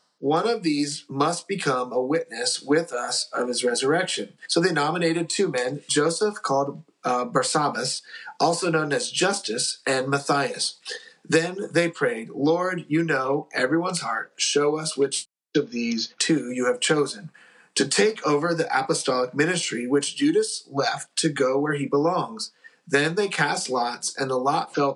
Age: 30-49